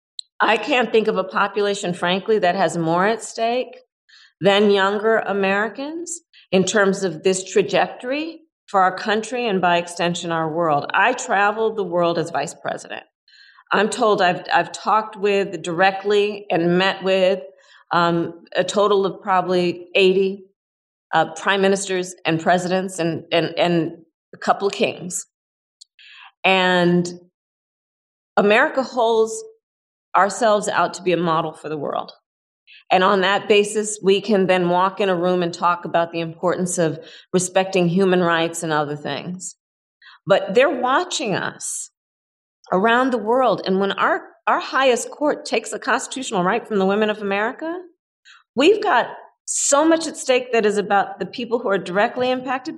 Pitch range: 175-220 Hz